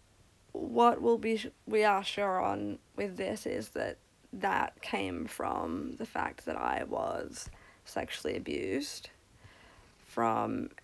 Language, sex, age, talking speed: English, female, 20-39, 120 wpm